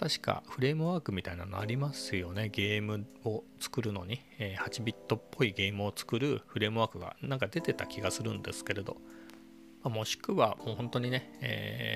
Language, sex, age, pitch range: Japanese, male, 40-59, 95-115 Hz